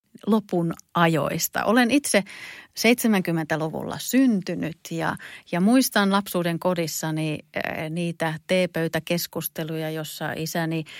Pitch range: 170-205 Hz